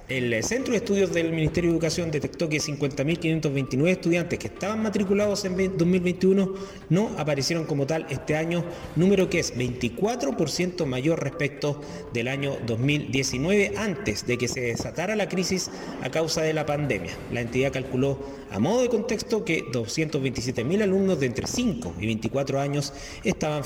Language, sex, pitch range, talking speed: Spanish, male, 130-170 Hz, 155 wpm